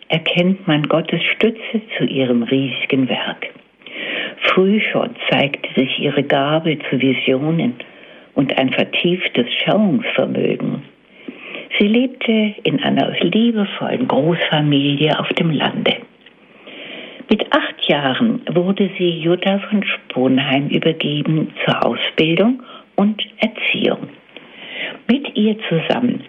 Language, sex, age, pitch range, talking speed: German, female, 60-79, 150-225 Hz, 105 wpm